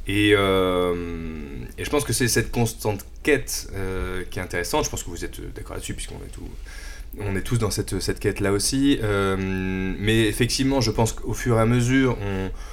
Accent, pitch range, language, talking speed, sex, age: French, 95-110 Hz, French, 210 wpm, male, 20-39